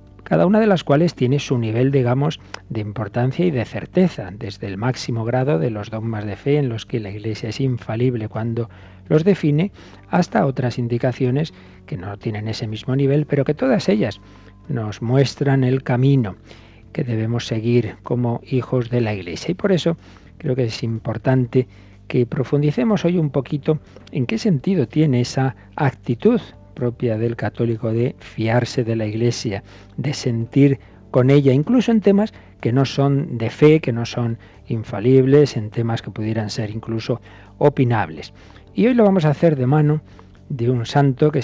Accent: Spanish